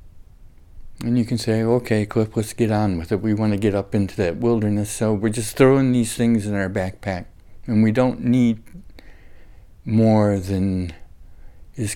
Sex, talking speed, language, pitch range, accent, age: male, 175 wpm, English, 95-115 Hz, American, 60-79